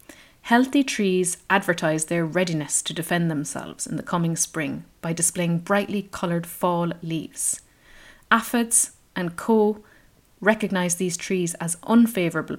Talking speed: 125 wpm